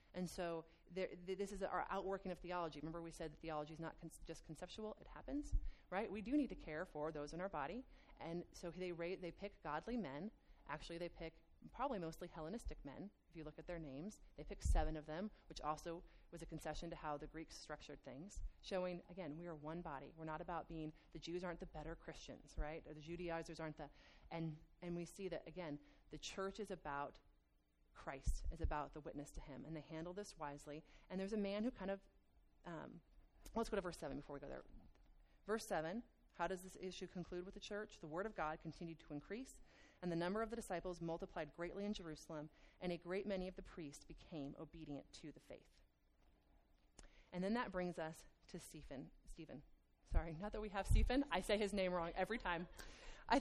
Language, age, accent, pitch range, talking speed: English, 30-49, American, 155-195 Hz, 215 wpm